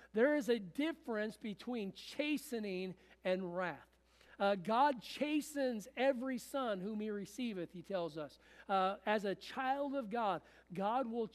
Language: English